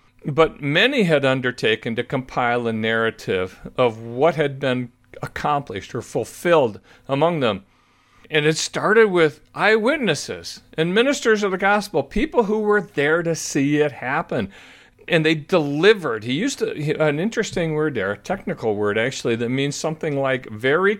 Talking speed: 150 wpm